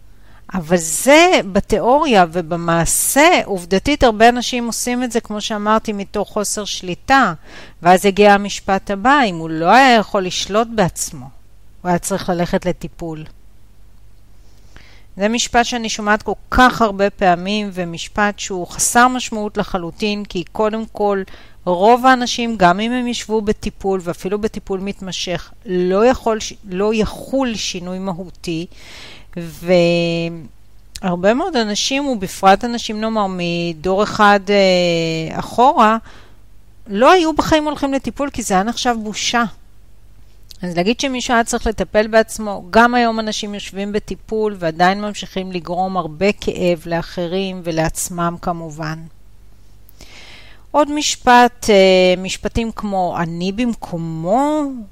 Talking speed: 120 wpm